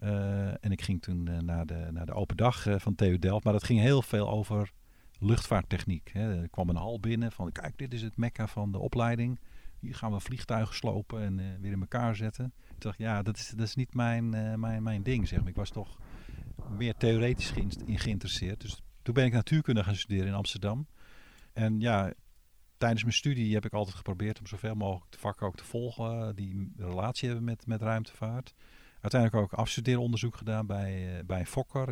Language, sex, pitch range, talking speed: Dutch, male, 95-120 Hz, 210 wpm